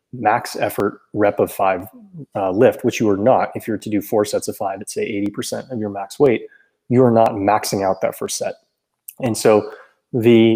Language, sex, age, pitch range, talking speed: English, male, 20-39, 105-140 Hz, 215 wpm